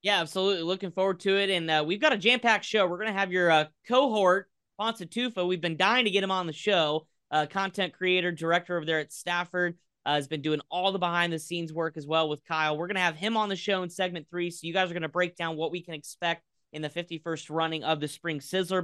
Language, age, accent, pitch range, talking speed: English, 20-39, American, 170-215 Hz, 260 wpm